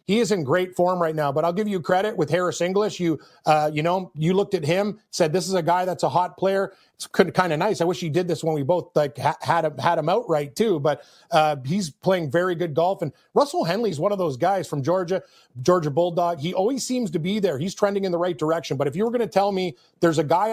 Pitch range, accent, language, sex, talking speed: 155-185 Hz, American, English, male, 275 wpm